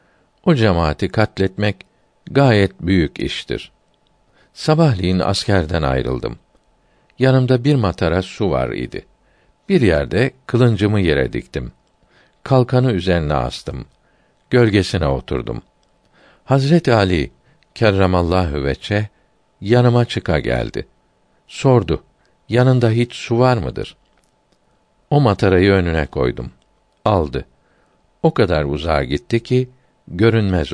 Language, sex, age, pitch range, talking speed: Turkish, male, 50-69, 85-120 Hz, 95 wpm